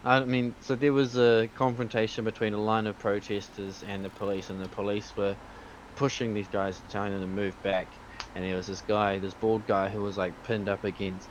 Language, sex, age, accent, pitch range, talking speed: English, male, 20-39, Australian, 95-110 Hz, 220 wpm